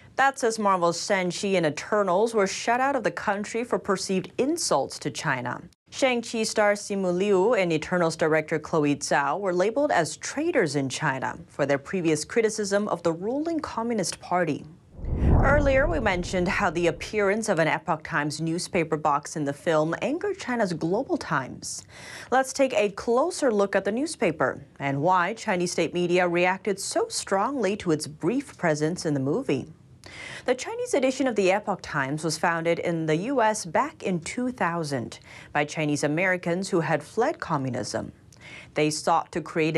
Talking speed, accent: 165 wpm, American